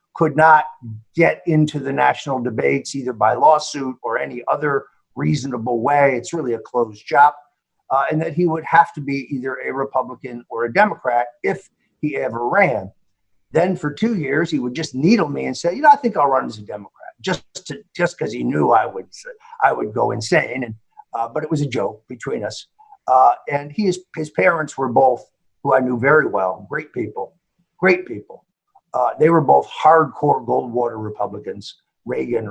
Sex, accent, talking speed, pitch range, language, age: male, American, 190 wpm, 120-155 Hz, English, 50-69